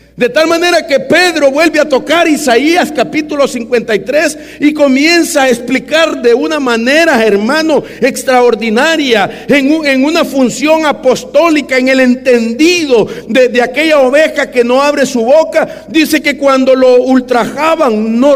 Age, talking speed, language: 50-69, 145 wpm, English